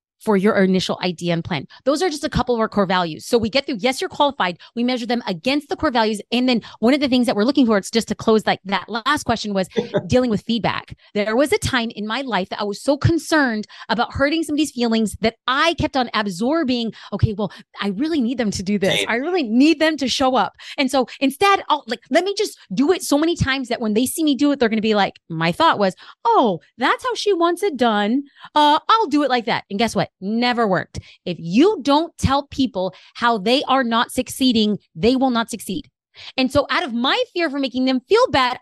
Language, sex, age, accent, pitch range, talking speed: English, female, 30-49, American, 205-285 Hz, 250 wpm